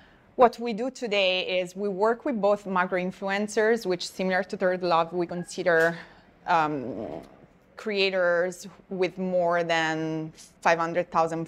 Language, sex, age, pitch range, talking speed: English, female, 20-39, 175-205 Hz, 125 wpm